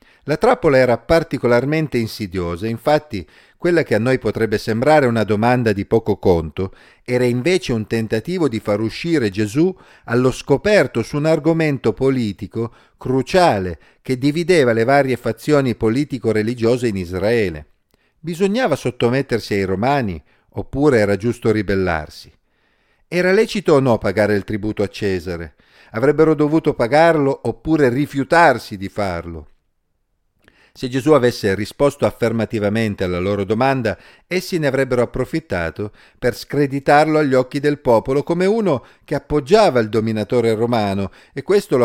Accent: native